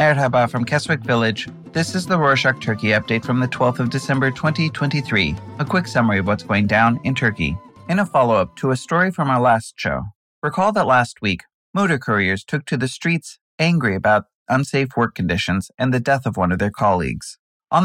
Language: English